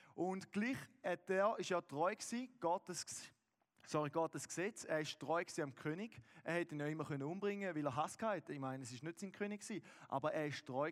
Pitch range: 155-190 Hz